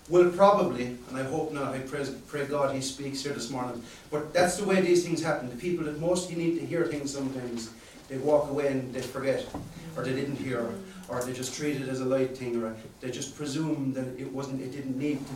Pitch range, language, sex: 130-150 Hz, English, male